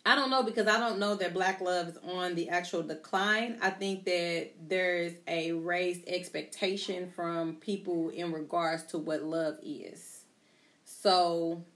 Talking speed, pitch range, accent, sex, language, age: 160 wpm, 165-190 Hz, American, female, English, 30-49